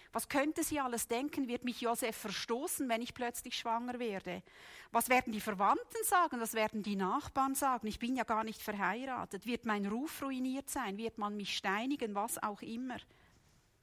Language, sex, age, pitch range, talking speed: German, female, 40-59, 215-255 Hz, 180 wpm